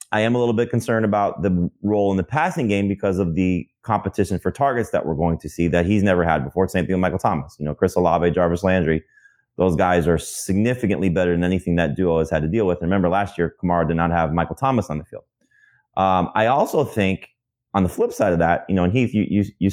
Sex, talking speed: male, 255 wpm